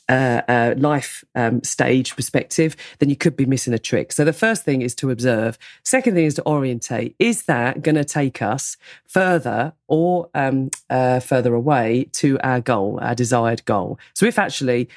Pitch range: 125-155 Hz